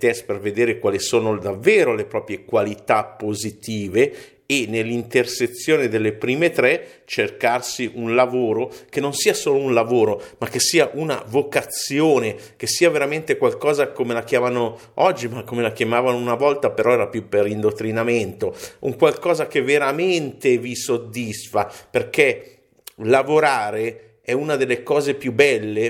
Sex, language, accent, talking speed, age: male, Italian, native, 145 wpm, 50-69